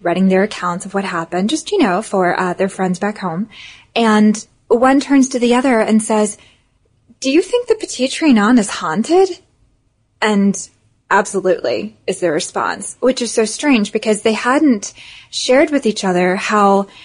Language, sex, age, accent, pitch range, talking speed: English, female, 10-29, American, 190-235 Hz, 170 wpm